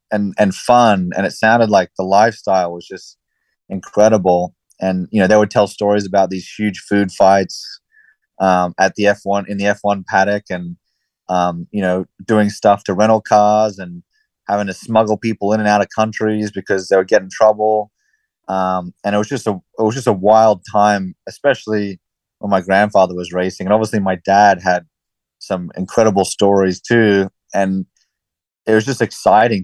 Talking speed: 185 wpm